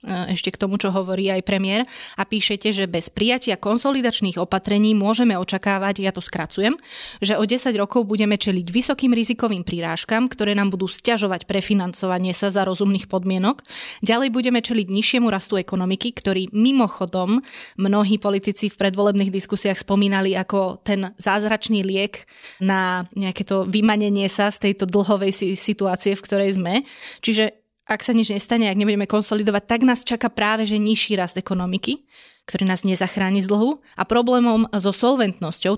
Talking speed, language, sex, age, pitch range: 155 wpm, Slovak, female, 20-39, 195-220 Hz